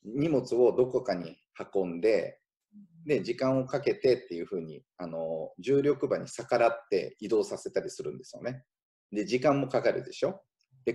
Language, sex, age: Japanese, male, 30-49